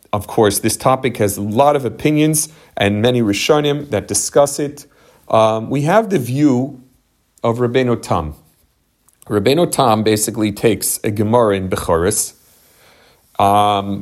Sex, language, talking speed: male, English, 135 wpm